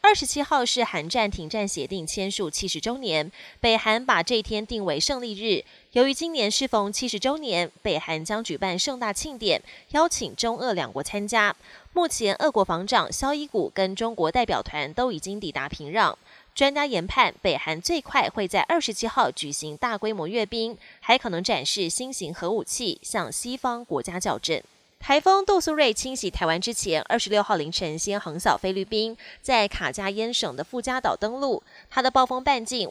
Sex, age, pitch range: female, 20-39, 190-260 Hz